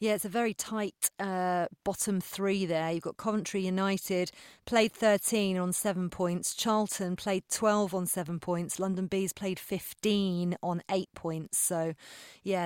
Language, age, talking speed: English, 30-49, 155 wpm